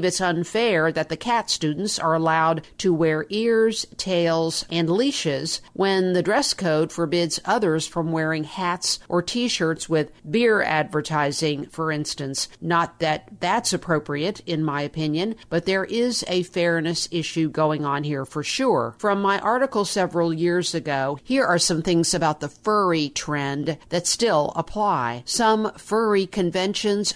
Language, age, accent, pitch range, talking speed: English, 50-69, American, 155-190 Hz, 150 wpm